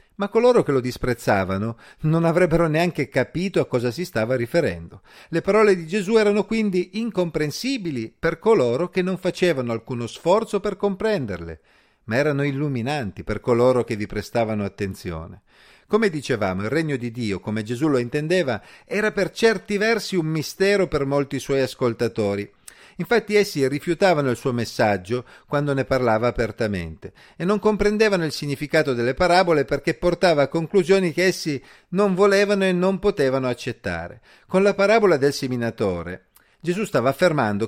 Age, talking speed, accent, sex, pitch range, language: 40-59, 155 wpm, native, male, 115-180 Hz, Italian